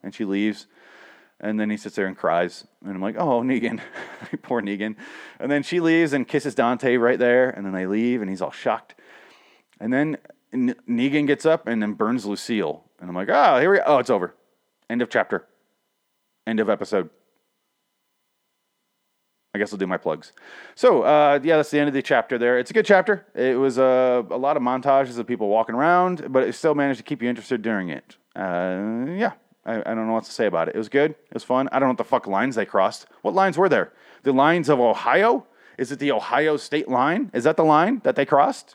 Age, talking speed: 30-49, 230 wpm